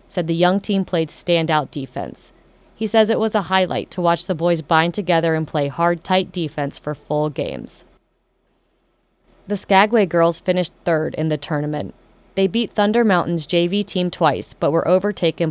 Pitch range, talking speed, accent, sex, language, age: 160-190 Hz, 175 wpm, American, female, English, 30-49